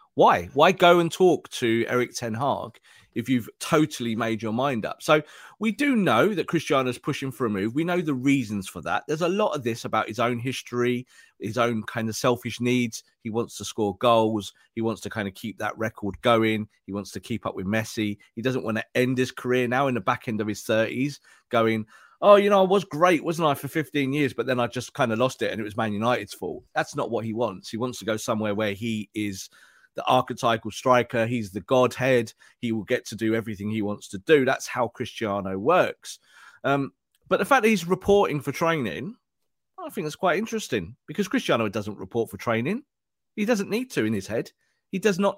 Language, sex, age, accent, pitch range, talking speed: English, male, 30-49, British, 110-155 Hz, 230 wpm